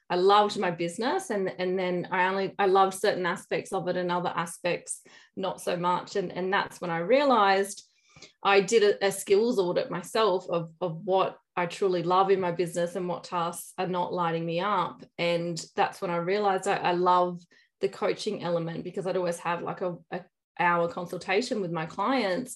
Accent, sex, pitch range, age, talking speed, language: Australian, female, 175-200 Hz, 20-39, 195 wpm, English